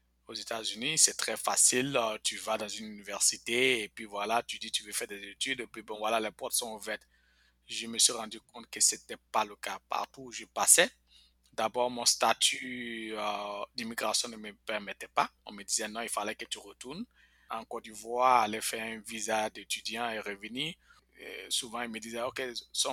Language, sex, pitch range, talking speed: French, male, 110-130 Hz, 205 wpm